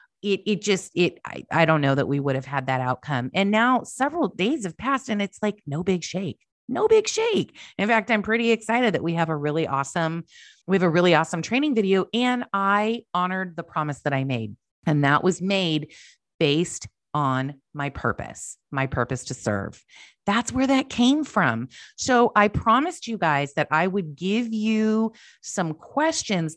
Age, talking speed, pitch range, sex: 30-49, 190 wpm, 150-210 Hz, female